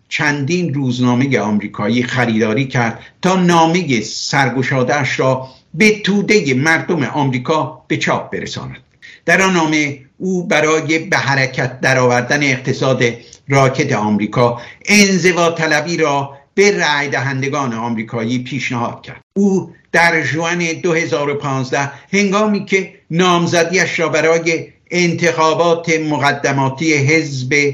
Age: 60-79